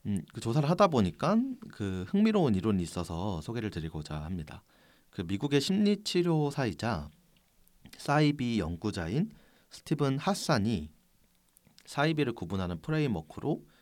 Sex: male